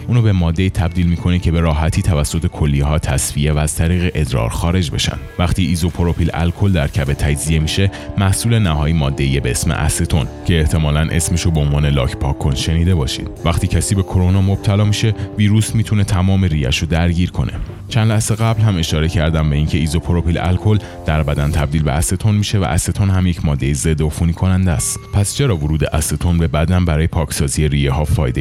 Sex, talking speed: male, 180 wpm